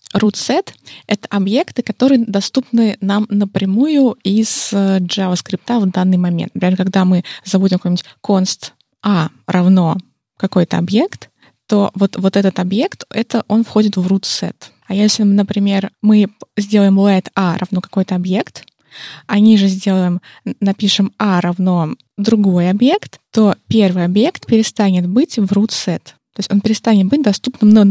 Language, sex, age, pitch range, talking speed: Russian, female, 20-39, 185-220 Hz, 145 wpm